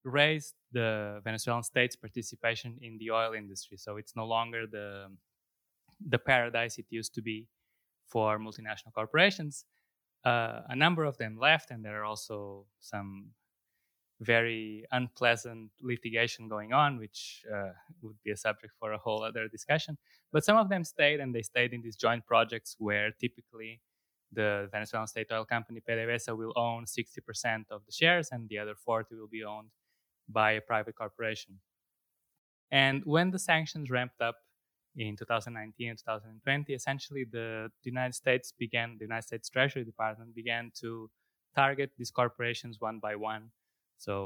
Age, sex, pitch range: 20-39, male, 110-125 Hz